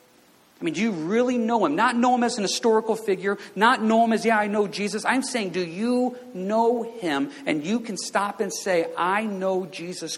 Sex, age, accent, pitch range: male, 50-69, American, 155-240 Hz